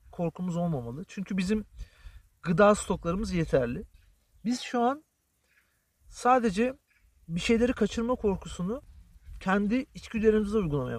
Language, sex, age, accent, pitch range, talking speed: Turkish, male, 40-59, native, 125-200 Hz, 100 wpm